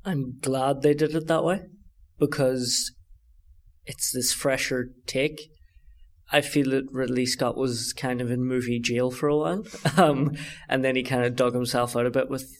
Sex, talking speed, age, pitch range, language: male, 180 wpm, 20-39, 110-130 Hz, English